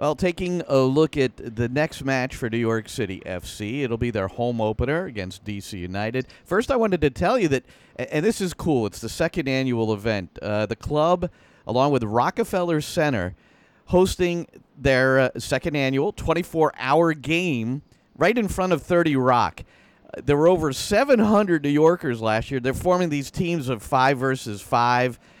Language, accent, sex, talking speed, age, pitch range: English, American, male, 170 wpm, 40-59, 120-160 Hz